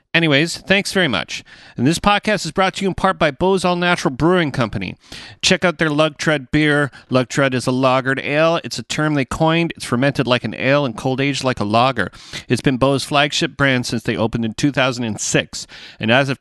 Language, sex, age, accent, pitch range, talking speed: English, male, 40-59, American, 125-165 Hz, 210 wpm